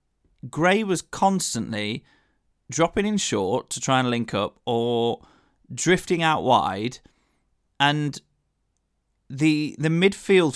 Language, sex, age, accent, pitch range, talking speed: English, male, 30-49, British, 115-155 Hz, 110 wpm